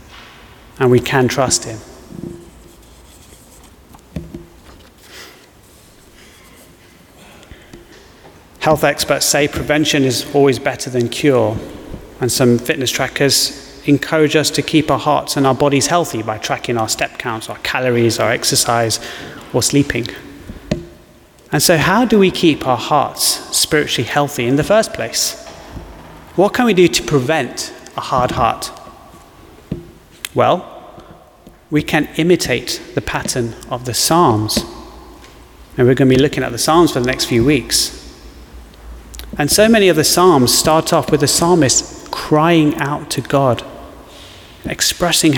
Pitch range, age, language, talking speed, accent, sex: 120-155 Hz, 30-49, English, 135 wpm, British, male